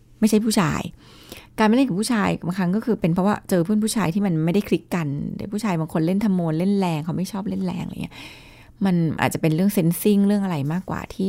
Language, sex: Thai, female